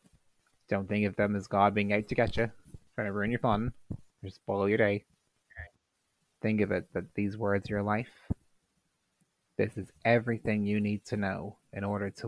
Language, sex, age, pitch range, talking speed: English, male, 20-39, 100-110 Hz, 195 wpm